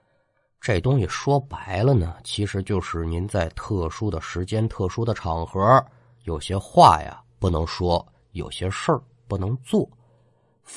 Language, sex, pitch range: Chinese, male, 85-120 Hz